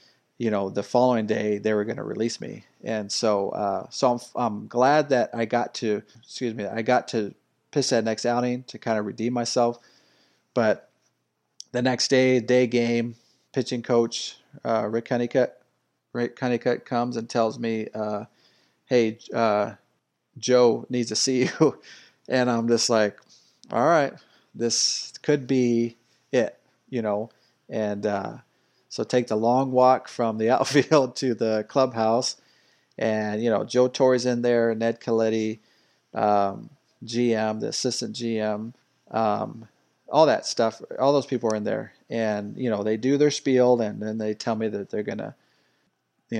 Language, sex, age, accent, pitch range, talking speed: English, male, 40-59, American, 110-125 Hz, 165 wpm